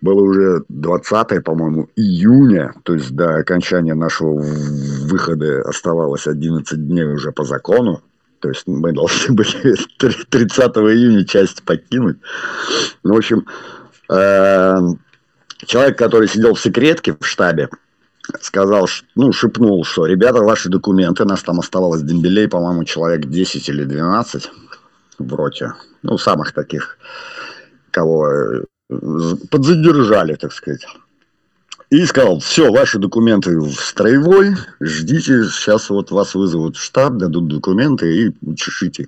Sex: male